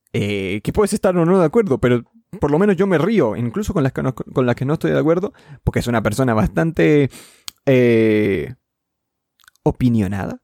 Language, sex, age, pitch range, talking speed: Spanish, male, 20-39, 115-155 Hz, 195 wpm